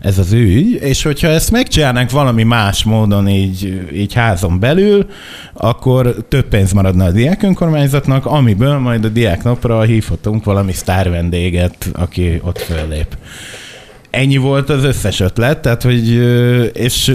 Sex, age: male, 30-49